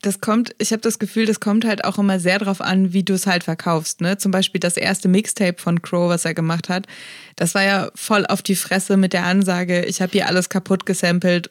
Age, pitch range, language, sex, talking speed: 20-39, 175-200 Hz, German, female, 245 wpm